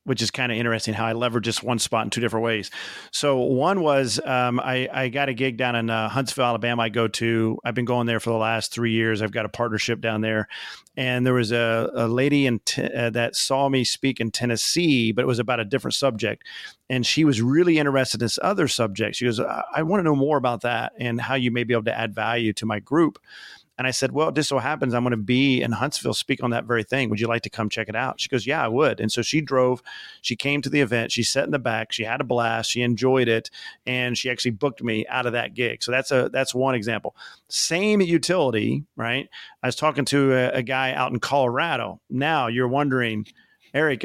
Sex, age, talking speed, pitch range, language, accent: male, 40-59, 250 wpm, 115-135 Hz, English, American